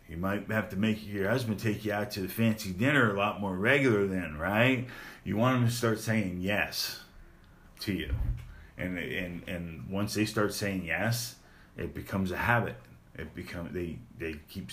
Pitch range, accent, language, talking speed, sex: 90-115 Hz, American, English, 190 wpm, male